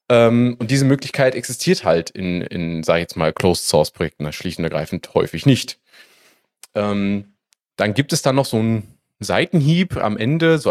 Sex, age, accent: male, 30-49, German